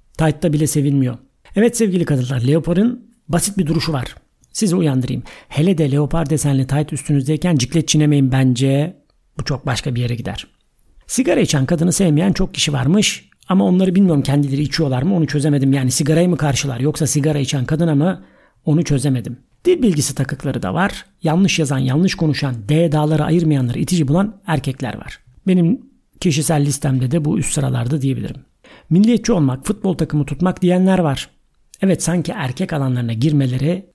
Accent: native